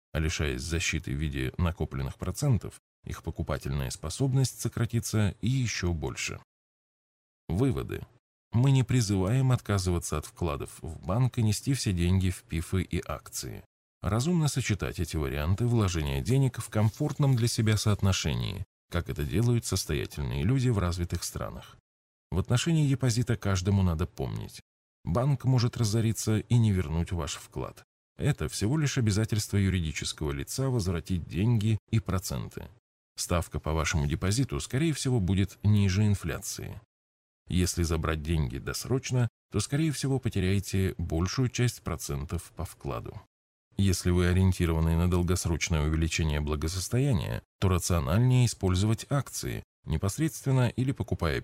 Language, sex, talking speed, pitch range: Russian, male, 130 wpm, 80-115 Hz